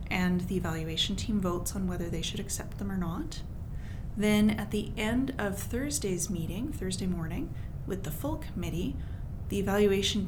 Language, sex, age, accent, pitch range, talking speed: English, female, 30-49, American, 180-205 Hz, 165 wpm